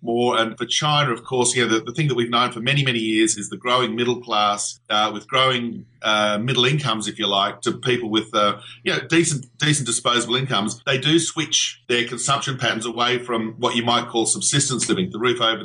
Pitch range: 115-140 Hz